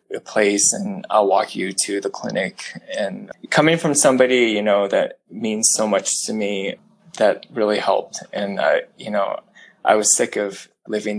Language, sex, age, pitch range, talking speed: English, male, 20-39, 105-145 Hz, 175 wpm